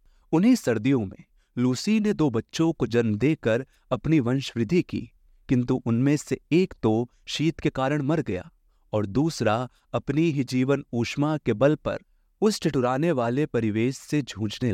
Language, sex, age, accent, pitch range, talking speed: English, male, 30-49, Indian, 110-155 Hz, 155 wpm